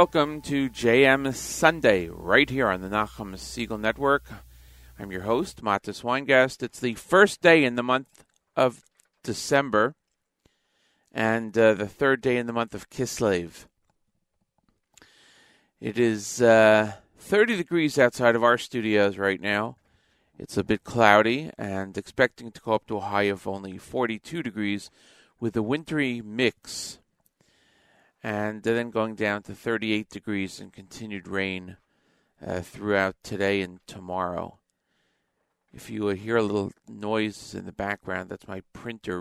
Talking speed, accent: 140 wpm, American